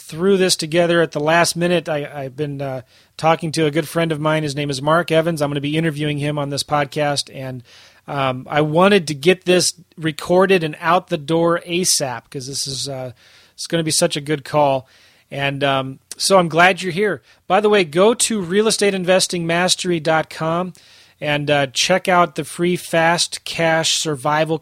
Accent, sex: American, male